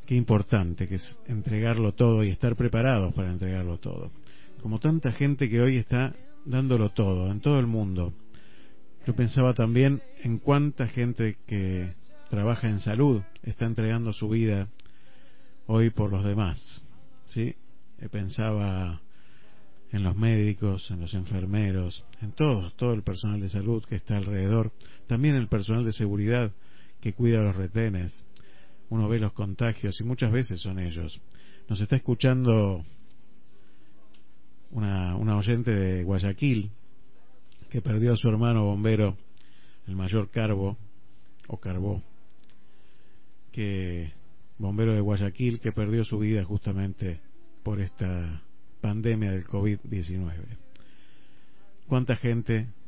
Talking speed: 130 wpm